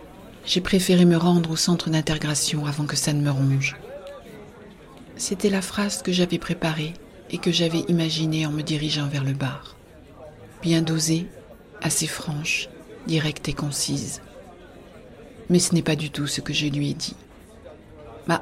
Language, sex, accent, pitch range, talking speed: French, female, French, 155-185 Hz, 160 wpm